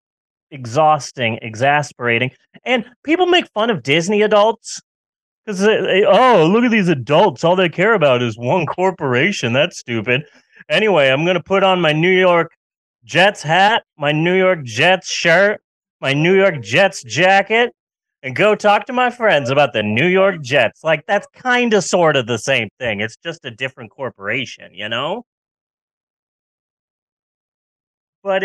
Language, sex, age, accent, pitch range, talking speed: English, male, 30-49, American, 125-195 Hz, 150 wpm